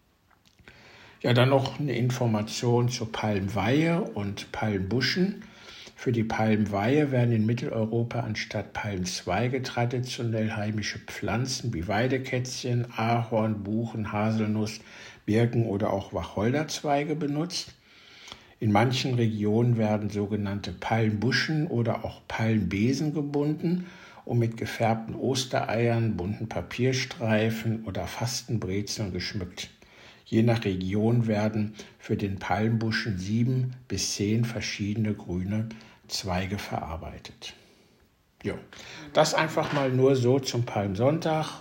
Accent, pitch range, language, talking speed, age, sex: German, 105-125 Hz, German, 100 wpm, 60-79, male